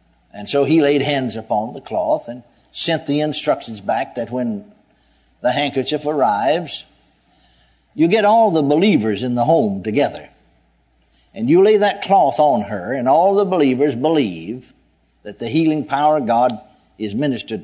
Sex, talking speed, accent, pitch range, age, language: male, 160 wpm, American, 115-160 Hz, 60-79, English